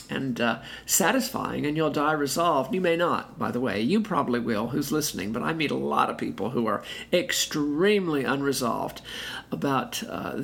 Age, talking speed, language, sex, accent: 50-69, 180 wpm, English, male, American